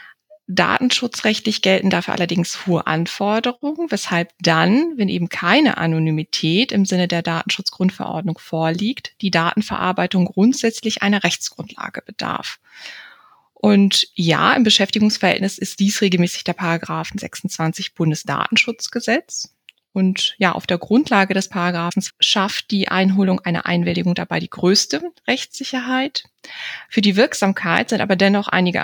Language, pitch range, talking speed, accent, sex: German, 175-225 Hz, 120 wpm, German, female